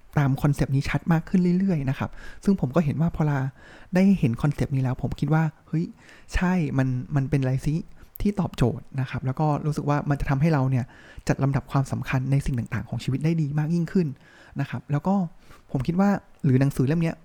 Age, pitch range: 20-39, 135-165 Hz